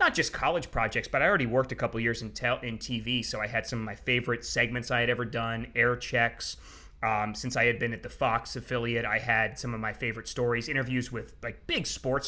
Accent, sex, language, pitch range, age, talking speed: American, male, English, 115-150 Hz, 30-49, 235 wpm